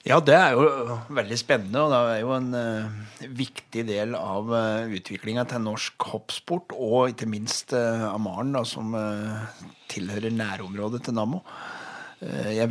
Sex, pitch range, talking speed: male, 110-135 Hz, 165 wpm